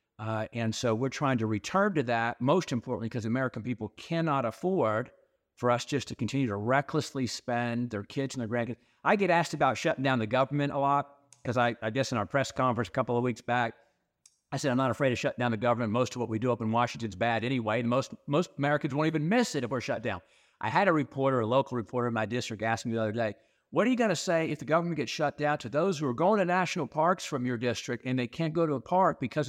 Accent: American